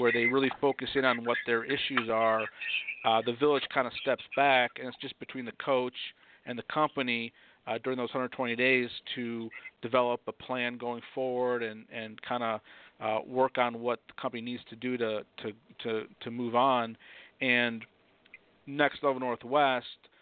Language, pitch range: English, 115-130 Hz